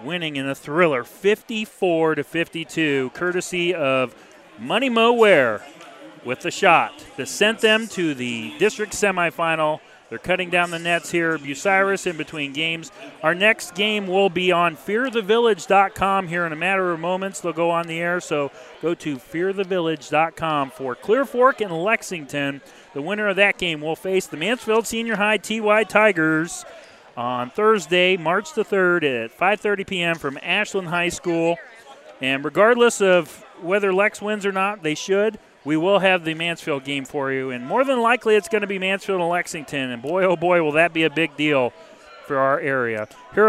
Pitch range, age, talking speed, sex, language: 160-205 Hz, 40-59, 175 wpm, male, English